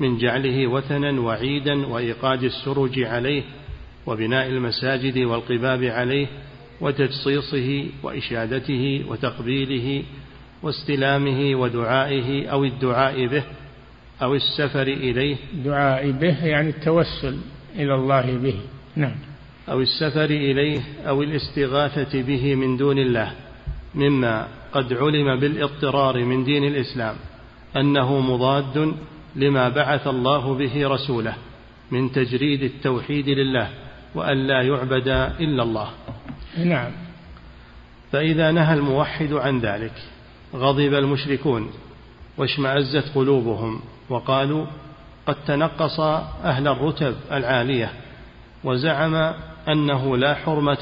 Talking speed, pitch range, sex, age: 95 wpm, 130-145 Hz, male, 50-69